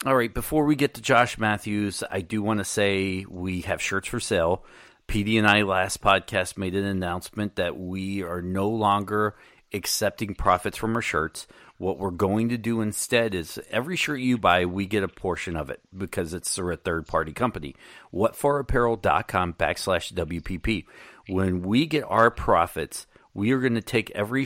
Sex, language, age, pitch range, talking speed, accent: male, English, 40-59, 95-115 Hz, 175 wpm, American